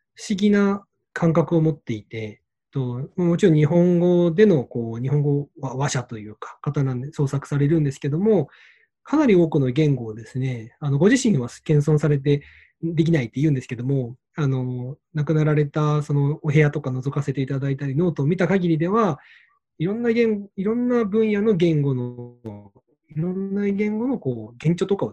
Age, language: 20-39, Japanese